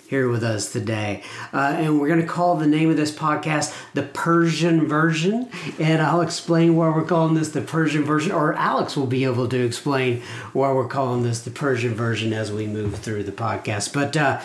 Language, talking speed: English, 210 wpm